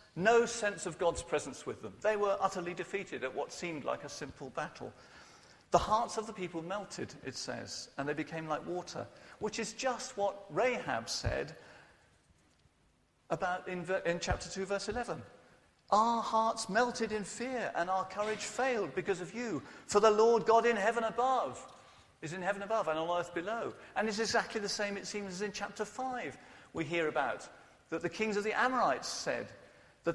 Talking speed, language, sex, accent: 185 wpm, English, male, British